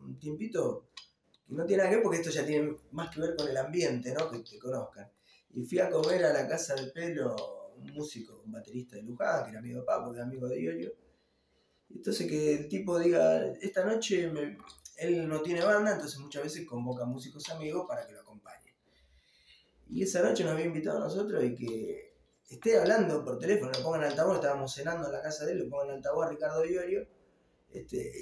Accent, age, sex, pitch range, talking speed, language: Argentinian, 20-39, male, 125-170 Hz, 215 wpm, Spanish